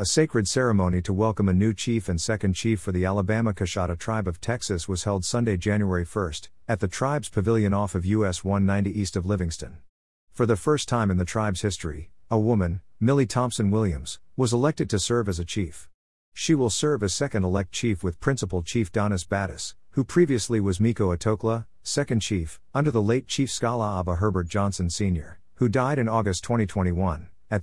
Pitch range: 90-115 Hz